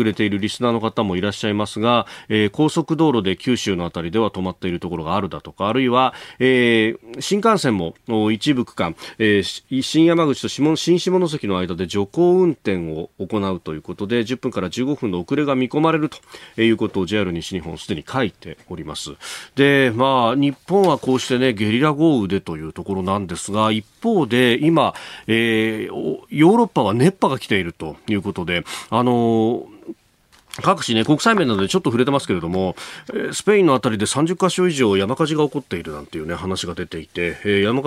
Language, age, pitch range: Japanese, 40-59, 95-135 Hz